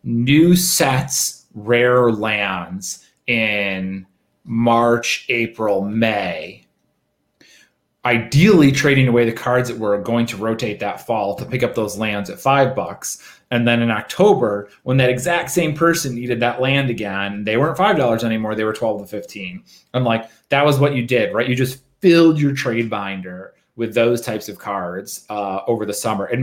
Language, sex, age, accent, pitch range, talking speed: English, male, 30-49, American, 110-140 Hz, 170 wpm